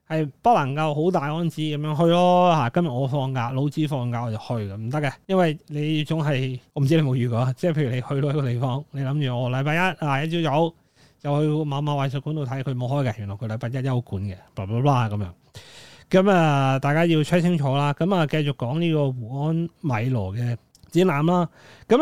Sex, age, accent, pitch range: male, 30-49, native, 125-165 Hz